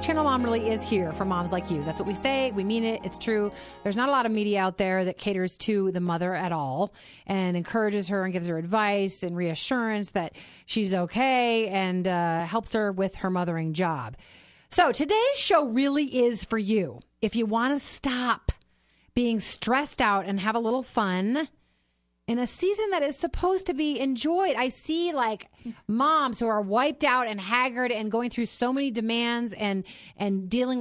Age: 30-49